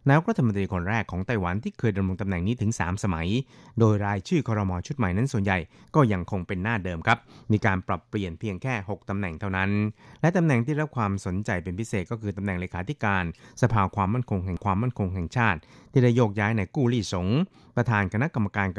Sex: male